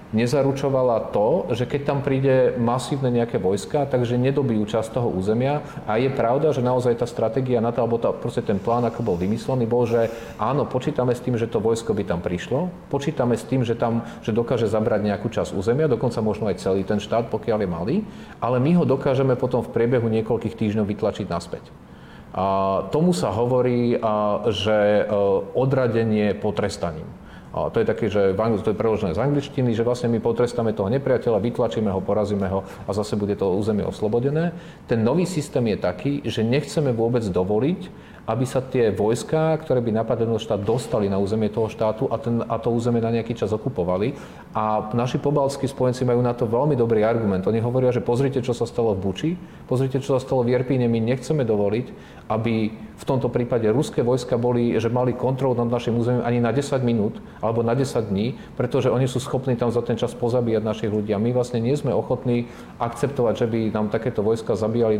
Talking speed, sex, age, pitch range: 190 wpm, male, 40-59, 110-130 Hz